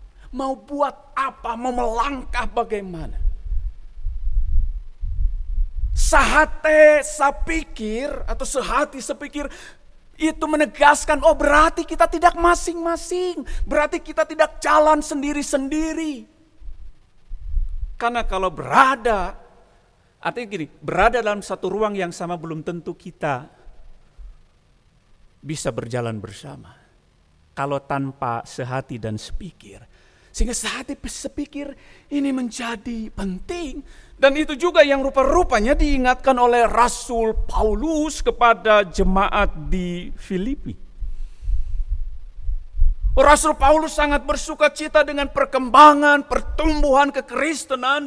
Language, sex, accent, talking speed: Indonesian, male, native, 90 wpm